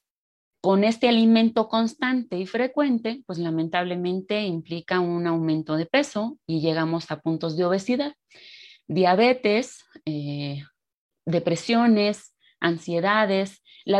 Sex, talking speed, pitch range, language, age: female, 105 wpm, 180-225 Hz, Spanish, 30-49